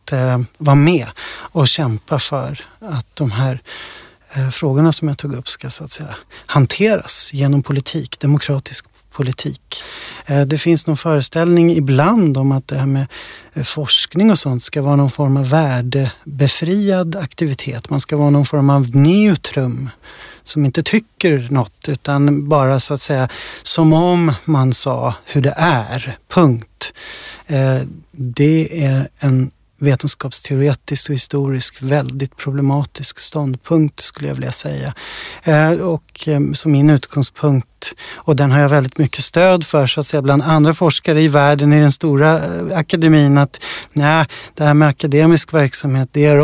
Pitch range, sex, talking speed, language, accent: 135-155 Hz, male, 145 wpm, Swedish, native